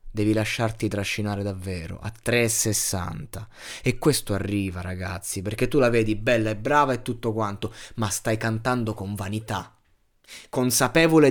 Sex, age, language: male, 20-39, Italian